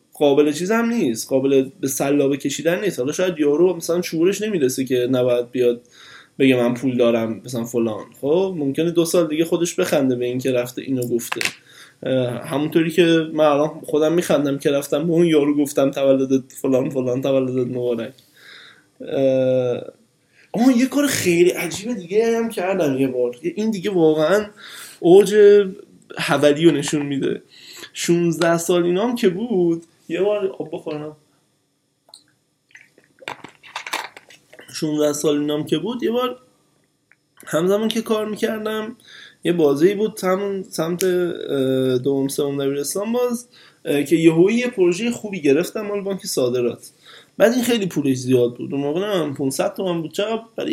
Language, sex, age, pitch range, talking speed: Persian, male, 20-39, 140-200 Hz, 140 wpm